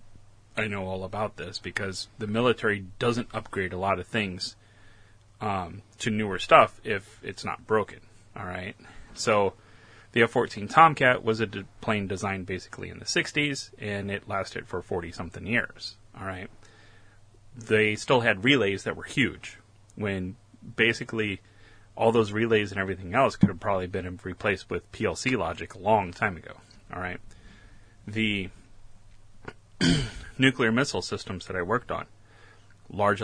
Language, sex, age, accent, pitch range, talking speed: English, male, 30-49, American, 100-110 Hz, 150 wpm